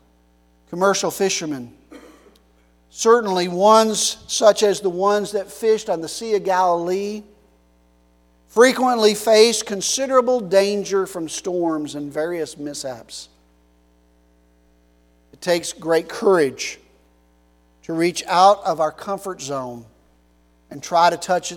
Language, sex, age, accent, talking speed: English, male, 50-69, American, 110 wpm